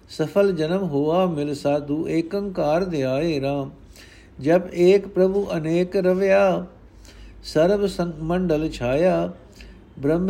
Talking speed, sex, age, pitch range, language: 105 wpm, male, 60-79, 140-175 Hz, Punjabi